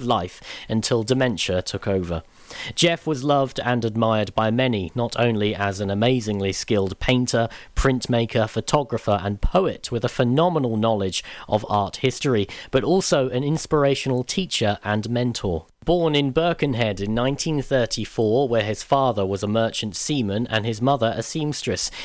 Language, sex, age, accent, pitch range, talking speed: English, male, 40-59, British, 110-140 Hz, 145 wpm